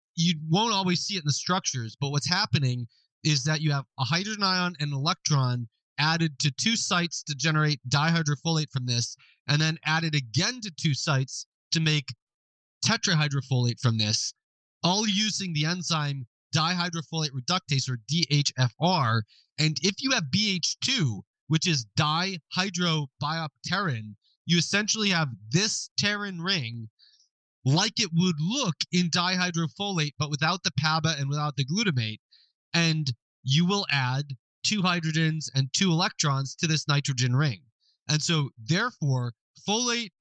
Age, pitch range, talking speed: 30-49, 135-180 Hz, 140 wpm